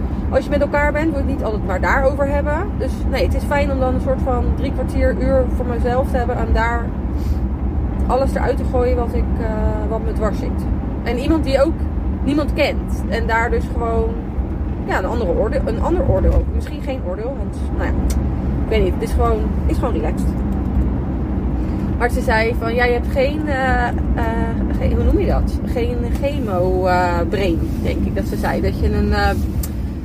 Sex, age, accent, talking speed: female, 20-39, Dutch, 200 wpm